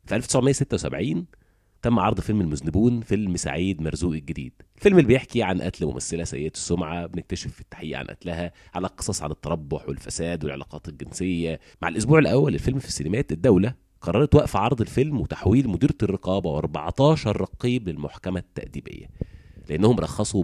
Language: Arabic